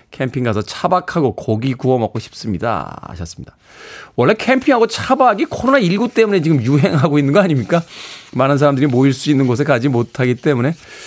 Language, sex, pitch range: Korean, male, 125-185 Hz